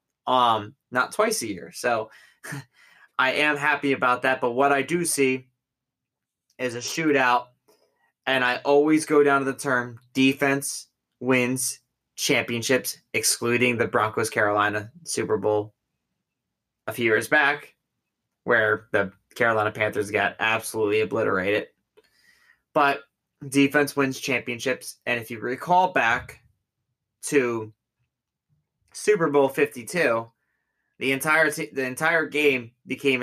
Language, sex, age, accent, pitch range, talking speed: English, male, 20-39, American, 120-145 Hz, 120 wpm